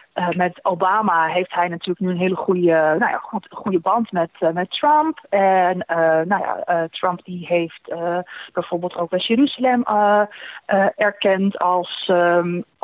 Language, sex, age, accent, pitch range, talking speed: Dutch, female, 30-49, Dutch, 175-215 Hz, 165 wpm